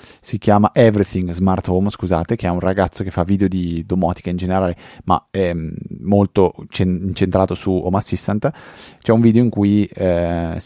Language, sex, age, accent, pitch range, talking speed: Italian, male, 30-49, native, 90-105 Hz, 175 wpm